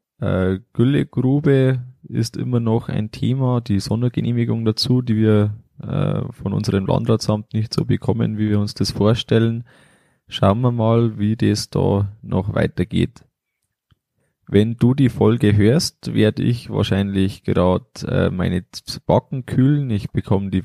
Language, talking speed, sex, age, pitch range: German, 130 wpm, male, 20-39, 100-125 Hz